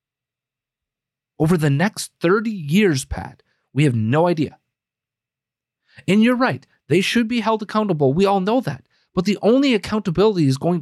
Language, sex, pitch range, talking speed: English, male, 135-195 Hz, 155 wpm